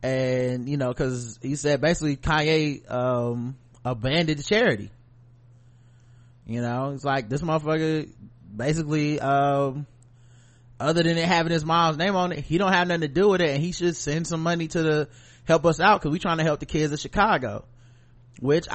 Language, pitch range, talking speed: English, 130-175 Hz, 180 wpm